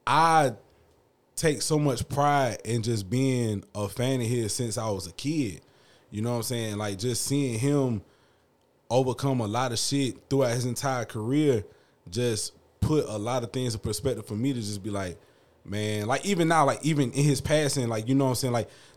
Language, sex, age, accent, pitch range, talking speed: English, male, 20-39, American, 110-145 Hz, 205 wpm